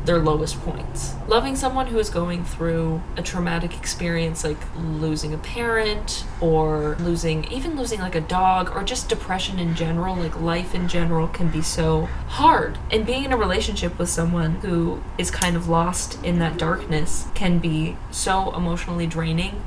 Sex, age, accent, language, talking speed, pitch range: female, 20-39, American, English, 170 wpm, 165-190 Hz